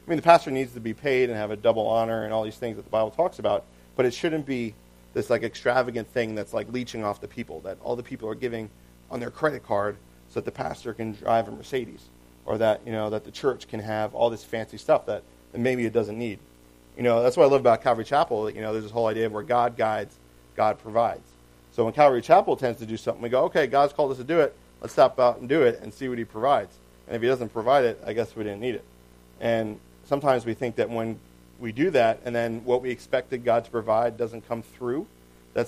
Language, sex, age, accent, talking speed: English, male, 40-59, American, 260 wpm